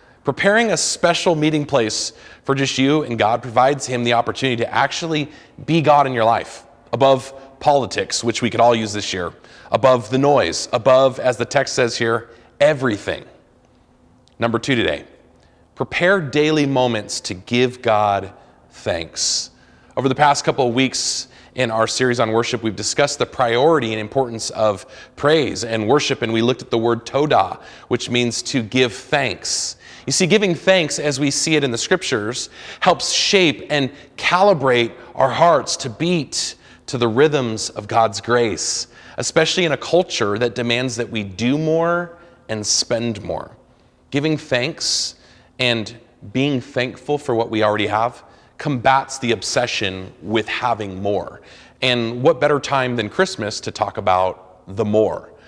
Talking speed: 160 wpm